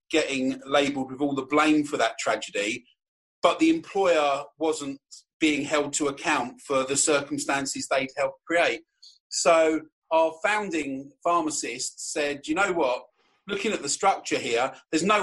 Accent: British